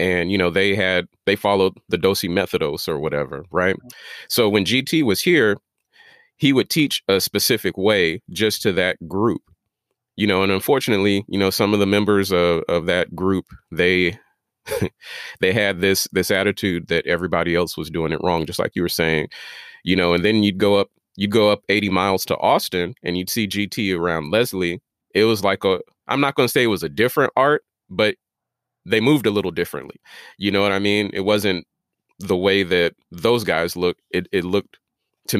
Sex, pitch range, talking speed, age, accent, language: male, 90-105 Hz, 200 wpm, 30-49, American, English